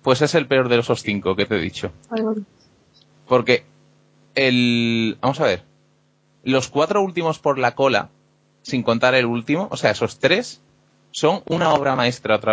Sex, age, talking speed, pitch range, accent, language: male, 30-49, 170 wpm, 120-175 Hz, Spanish, English